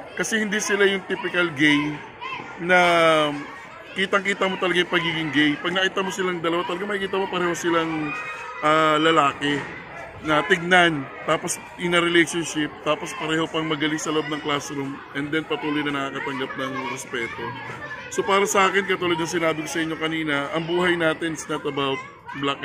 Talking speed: 165 wpm